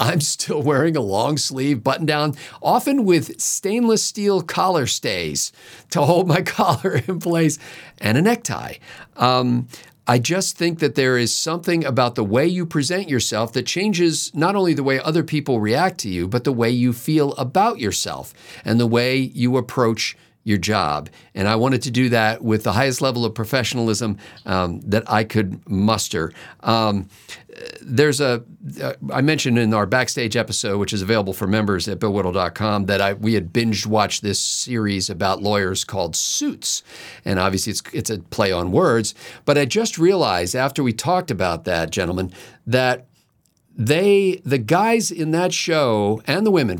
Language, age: English, 50-69